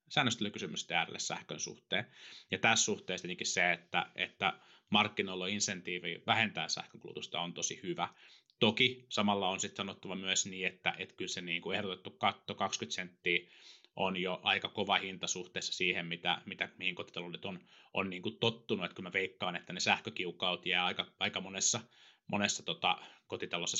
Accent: native